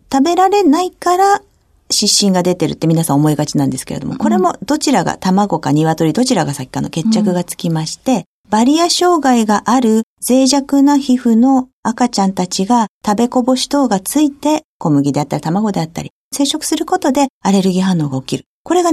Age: 50-69